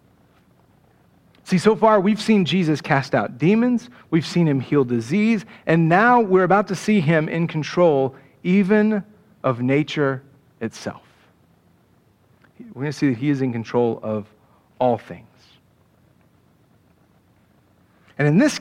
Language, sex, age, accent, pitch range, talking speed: English, male, 40-59, American, 155-215 Hz, 135 wpm